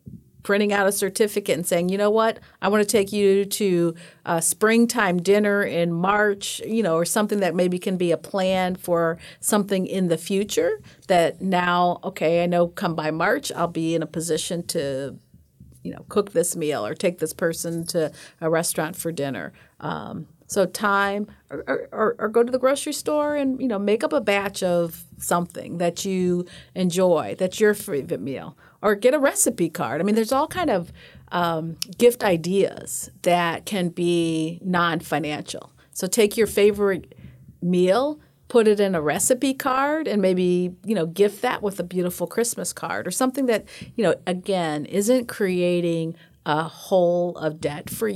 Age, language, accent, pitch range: 50-69, English, American, 165-205 Hz